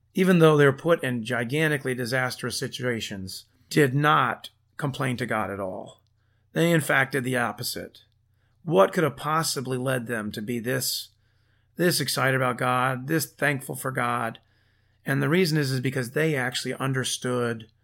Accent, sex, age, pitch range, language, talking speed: American, male, 30-49, 110-140 Hz, English, 160 wpm